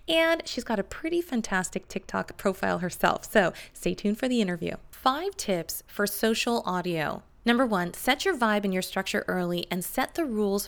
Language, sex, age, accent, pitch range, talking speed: English, female, 20-39, American, 185-275 Hz, 185 wpm